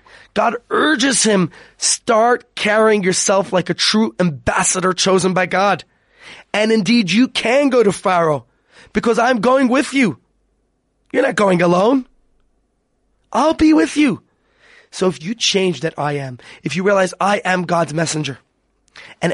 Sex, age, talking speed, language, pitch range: male, 20-39, 150 wpm, English, 175-230 Hz